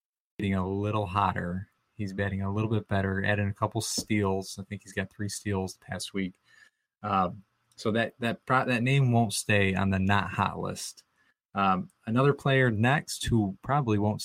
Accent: American